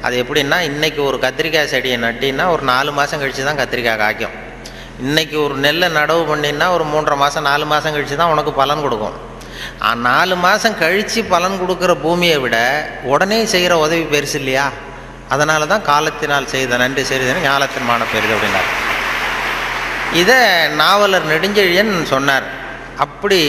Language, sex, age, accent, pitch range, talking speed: Tamil, male, 30-49, native, 135-170 Hz, 145 wpm